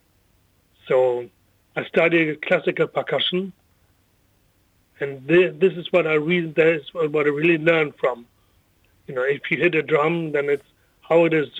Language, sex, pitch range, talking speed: English, male, 105-170 Hz, 155 wpm